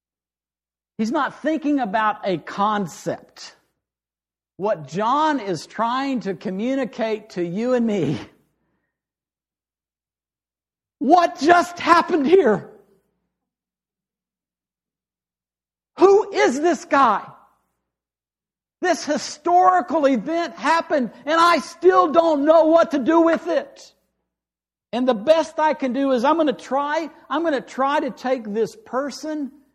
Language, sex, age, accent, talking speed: English, male, 60-79, American, 115 wpm